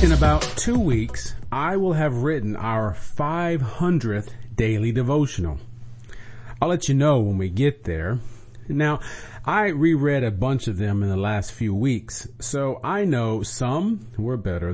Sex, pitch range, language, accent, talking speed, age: male, 110-140 Hz, English, American, 155 wpm, 40-59